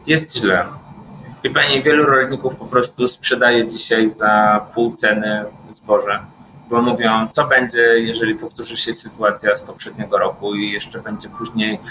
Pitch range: 115-125 Hz